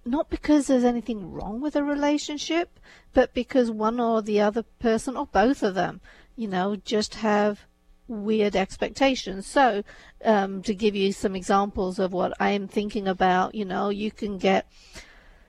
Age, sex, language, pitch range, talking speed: 50-69, female, English, 195-240 Hz, 165 wpm